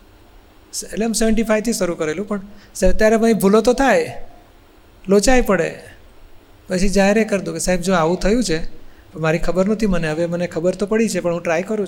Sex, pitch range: male, 160-215 Hz